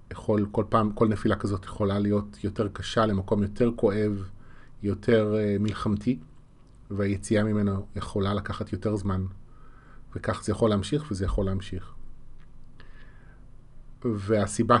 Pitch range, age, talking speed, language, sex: 105-125 Hz, 30-49, 120 wpm, Hebrew, male